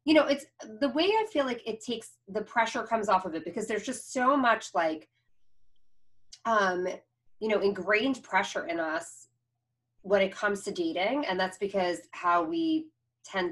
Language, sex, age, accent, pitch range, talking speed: English, female, 30-49, American, 165-230 Hz, 180 wpm